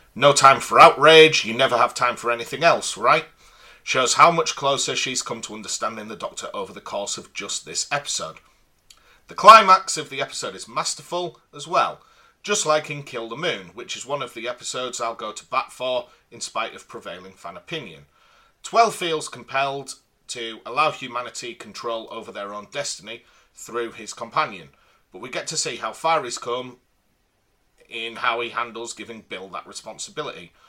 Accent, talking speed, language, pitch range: British, 180 wpm, English, 115-150 Hz